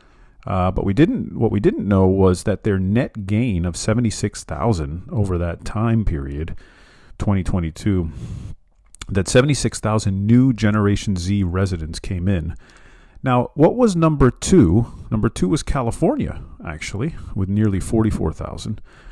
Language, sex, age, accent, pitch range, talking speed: English, male, 40-59, American, 95-120 Hz, 155 wpm